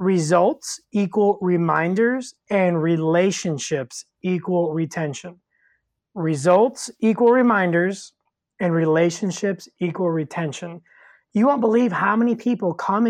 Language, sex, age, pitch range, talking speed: English, male, 20-39, 170-215 Hz, 95 wpm